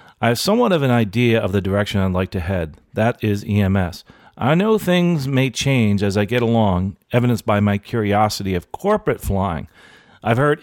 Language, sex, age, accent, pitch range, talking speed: English, male, 40-59, American, 100-140 Hz, 190 wpm